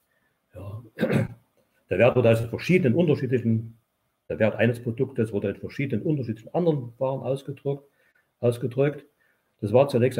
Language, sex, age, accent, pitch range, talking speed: German, male, 50-69, German, 115-150 Hz, 125 wpm